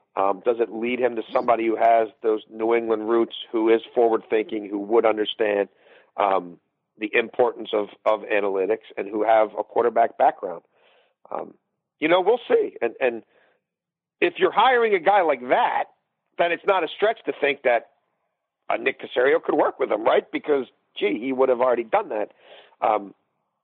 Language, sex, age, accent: English, male, 50-69, American